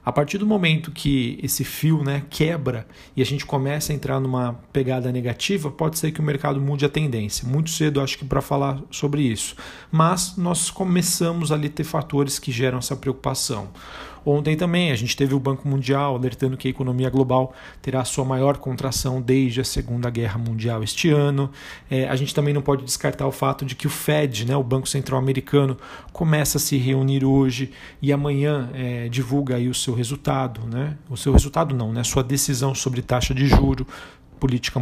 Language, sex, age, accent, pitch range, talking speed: Portuguese, male, 40-59, Brazilian, 130-145 Hz, 190 wpm